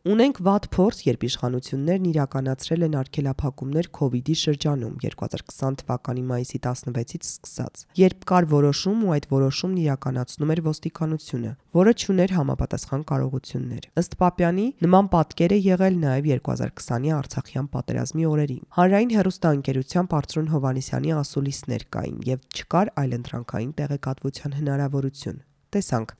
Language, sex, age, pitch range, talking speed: English, female, 20-39, 130-175 Hz, 90 wpm